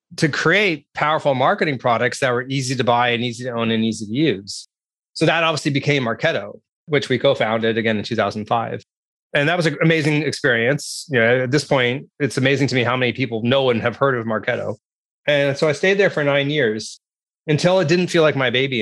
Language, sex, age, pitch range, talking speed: English, male, 30-49, 115-150 Hz, 215 wpm